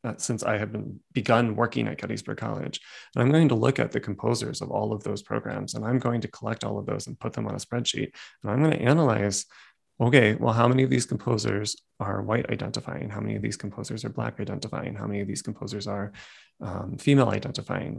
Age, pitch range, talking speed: 30-49, 110-135 Hz, 225 wpm